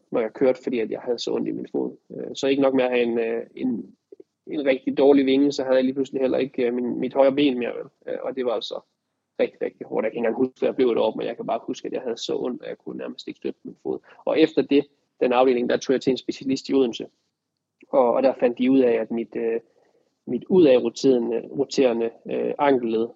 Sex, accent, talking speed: male, native, 255 wpm